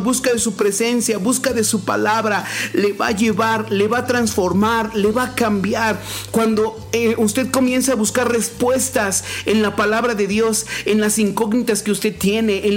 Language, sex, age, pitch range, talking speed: Spanish, male, 50-69, 200-235 Hz, 185 wpm